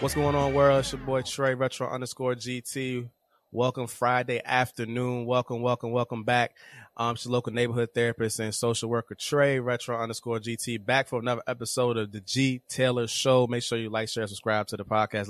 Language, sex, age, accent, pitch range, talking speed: English, male, 20-39, American, 110-125 Hz, 190 wpm